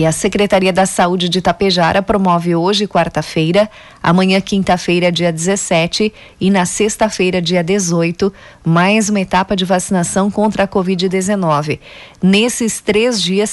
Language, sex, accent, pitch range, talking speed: Portuguese, female, Brazilian, 175-210 Hz, 135 wpm